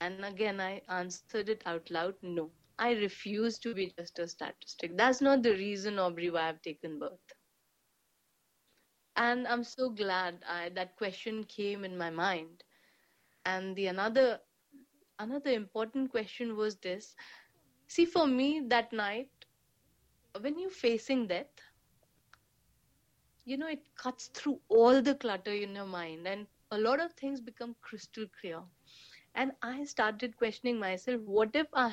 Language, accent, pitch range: English, Indian, 195-275 Hz